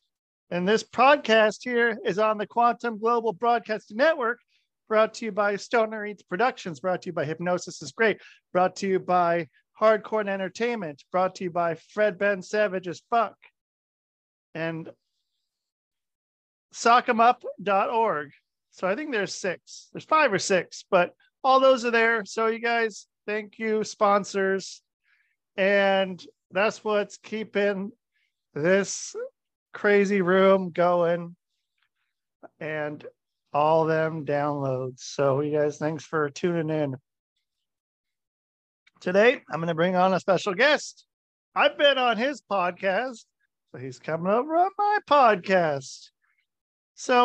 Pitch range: 175-230 Hz